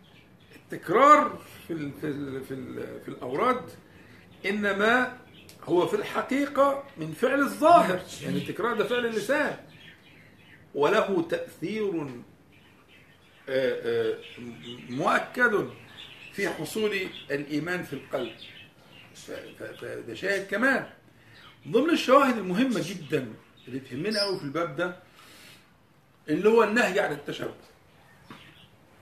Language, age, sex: Arabic, 50-69, male